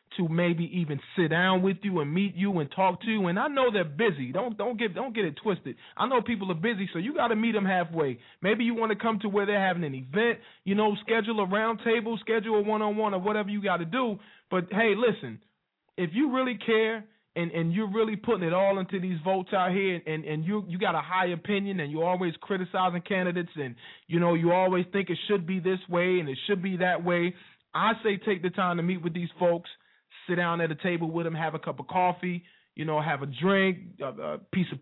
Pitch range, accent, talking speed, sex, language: 155-205 Hz, American, 245 wpm, male, English